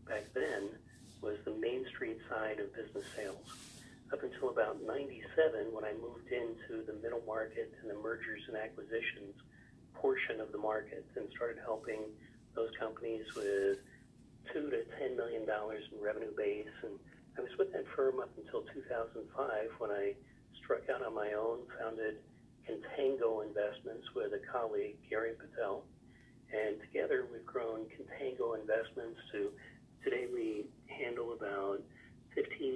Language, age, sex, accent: English, 40-59, male, American